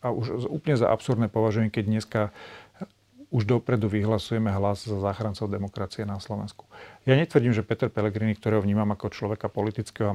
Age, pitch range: 40-59, 105-115 Hz